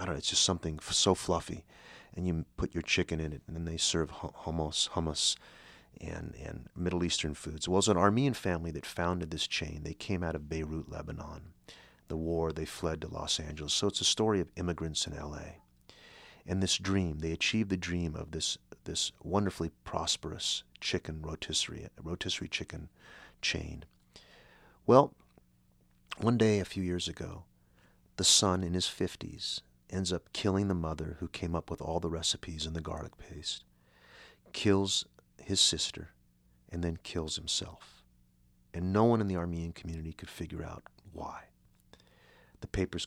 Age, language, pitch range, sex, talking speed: 40-59, English, 80-90 Hz, male, 175 wpm